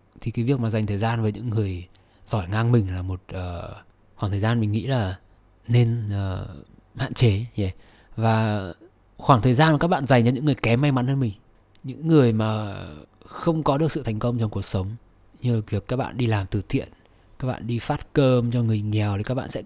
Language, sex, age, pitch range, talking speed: Vietnamese, male, 20-39, 110-145 Hz, 220 wpm